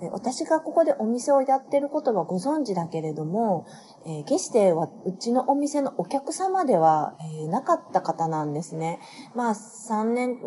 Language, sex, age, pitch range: Japanese, female, 30-49, 170-255 Hz